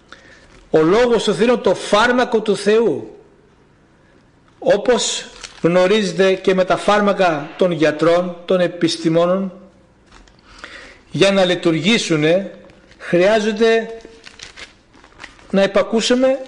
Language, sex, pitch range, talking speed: Greek, male, 180-225 Hz, 85 wpm